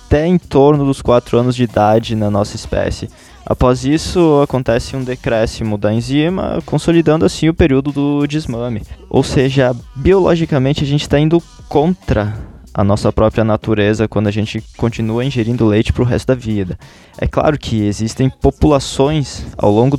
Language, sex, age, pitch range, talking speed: Portuguese, male, 20-39, 105-135 Hz, 160 wpm